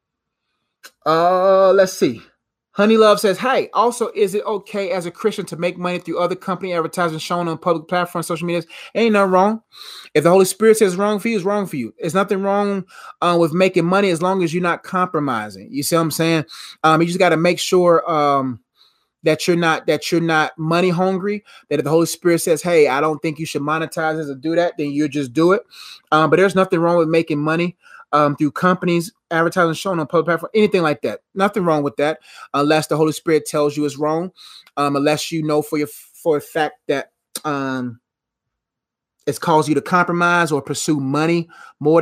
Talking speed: 215 wpm